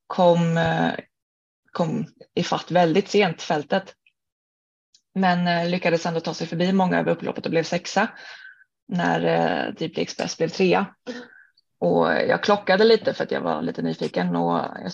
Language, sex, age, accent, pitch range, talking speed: Swedish, female, 20-39, native, 165-200 Hz, 155 wpm